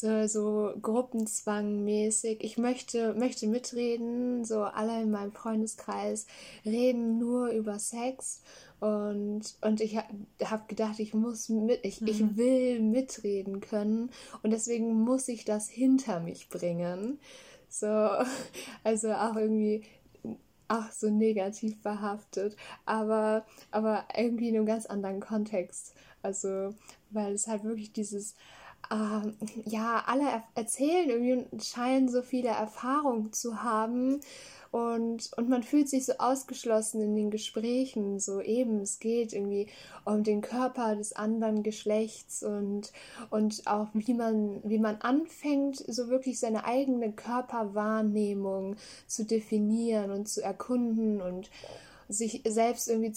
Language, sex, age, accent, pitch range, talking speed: German, female, 10-29, German, 210-240 Hz, 125 wpm